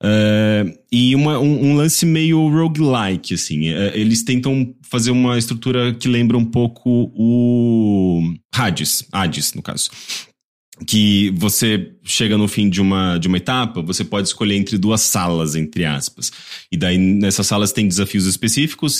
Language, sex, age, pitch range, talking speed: English, male, 30-49, 85-120 Hz, 145 wpm